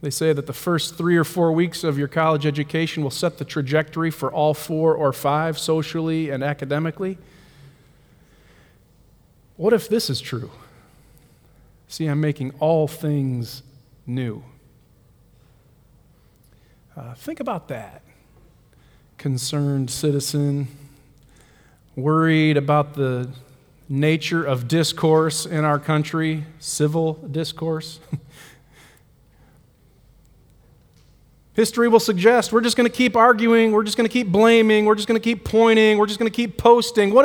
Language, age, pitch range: English, 40-59, 140-185 Hz